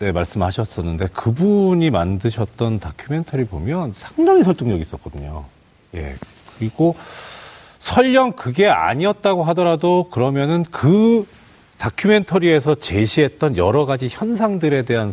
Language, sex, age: Korean, male, 40-59